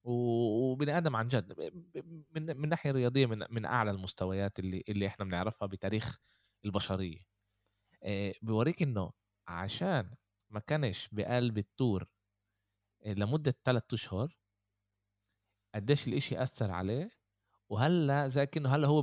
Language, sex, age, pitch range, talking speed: Arabic, male, 20-39, 100-130 Hz, 115 wpm